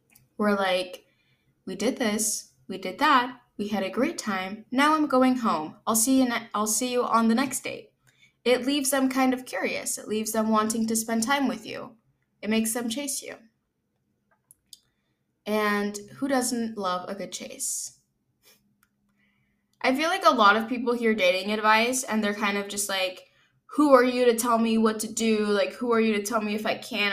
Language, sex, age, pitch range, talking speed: English, female, 10-29, 185-245 Hz, 200 wpm